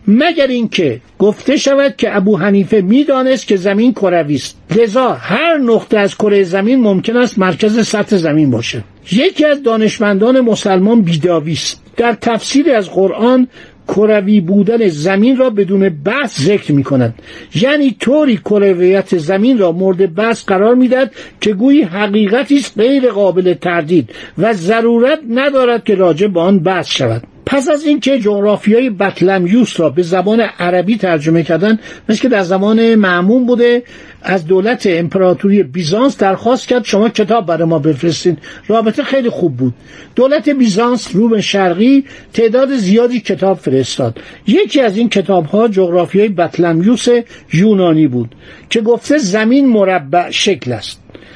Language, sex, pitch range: Persian, male, 180-240 Hz